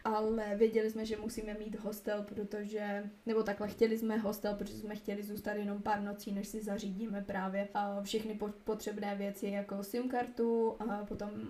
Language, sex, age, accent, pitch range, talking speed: Czech, female, 20-39, native, 210-235 Hz, 165 wpm